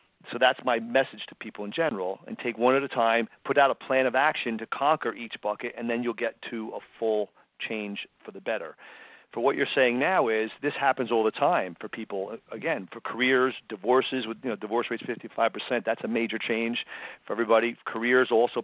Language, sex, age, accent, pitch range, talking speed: English, male, 40-59, American, 110-130 Hz, 215 wpm